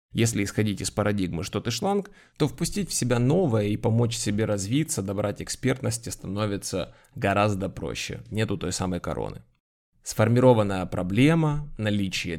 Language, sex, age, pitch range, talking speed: Ukrainian, male, 20-39, 95-115 Hz, 135 wpm